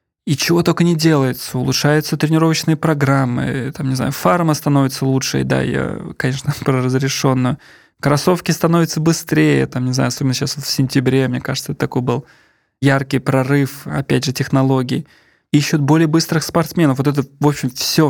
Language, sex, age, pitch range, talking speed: Russian, male, 20-39, 130-150 Hz, 160 wpm